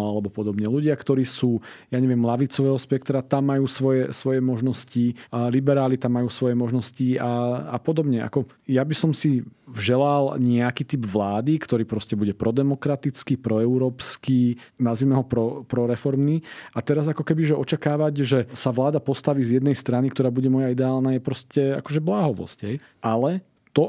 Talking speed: 160 wpm